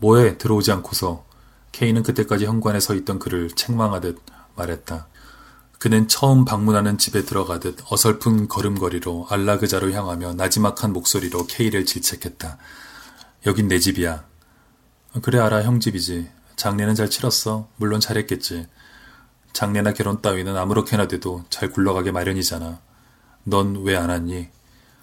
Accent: native